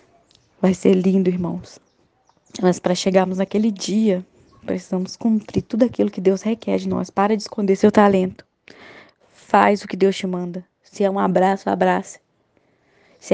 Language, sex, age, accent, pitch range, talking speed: Portuguese, female, 20-39, Brazilian, 185-210 Hz, 155 wpm